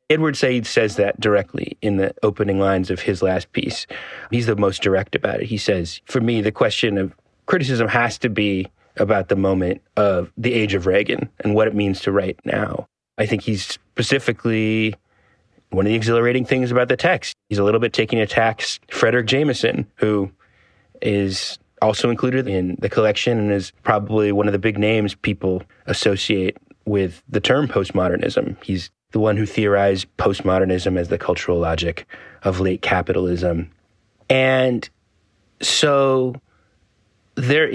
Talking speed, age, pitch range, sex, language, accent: 165 wpm, 30-49, 95-115 Hz, male, English, American